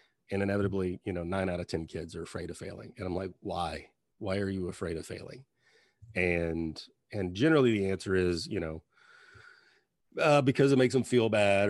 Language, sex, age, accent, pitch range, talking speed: English, male, 30-49, American, 90-110 Hz, 195 wpm